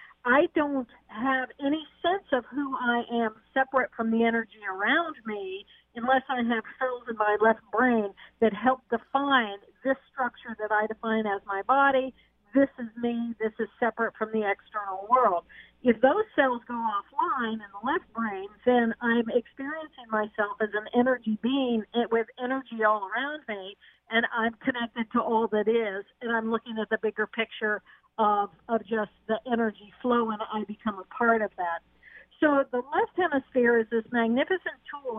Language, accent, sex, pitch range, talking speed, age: English, American, female, 220-260 Hz, 170 wpm, 50-69